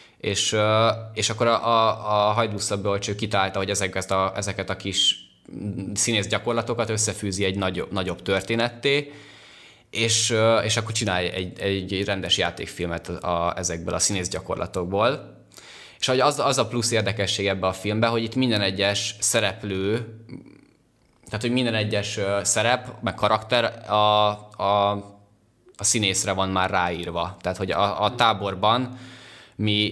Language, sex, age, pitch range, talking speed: Hungarian, male, 20-39, 95-110 Hz, 135 wpm